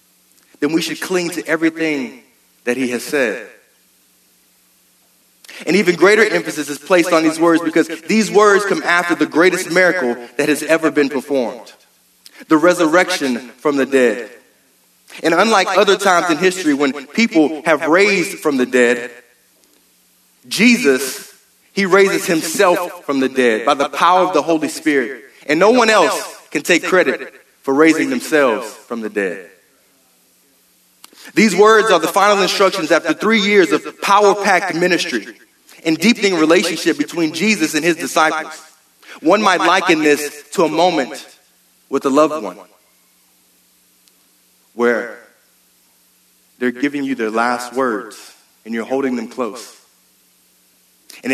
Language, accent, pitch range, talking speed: English, American, 110-175 Hz, 140 wpm